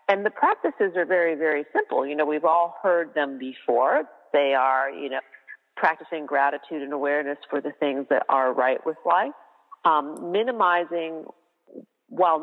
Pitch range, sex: 150-185 Hz, female